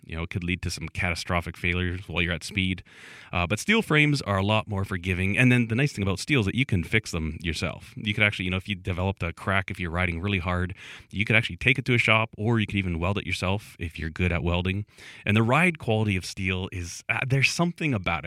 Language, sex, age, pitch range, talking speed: English, male, 30-49, 90-110 Hz, 270 wpm